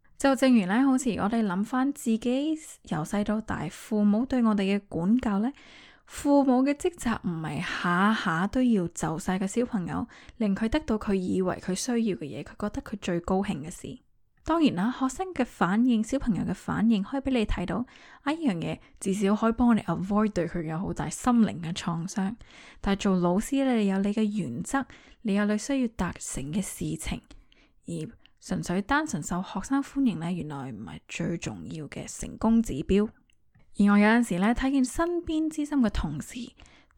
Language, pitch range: Chinese, 195-250 Hz